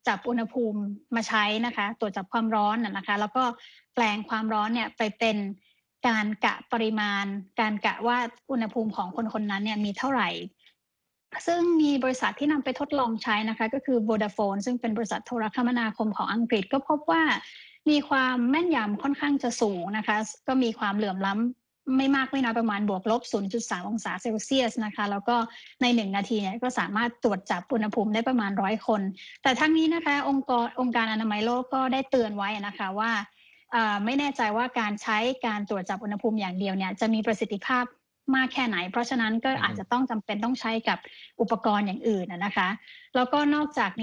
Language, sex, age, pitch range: Thai, female, 20-39, 215-255 Hz